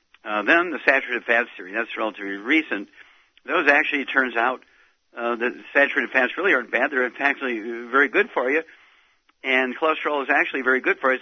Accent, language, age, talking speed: American, English, 50-69, 195 wpm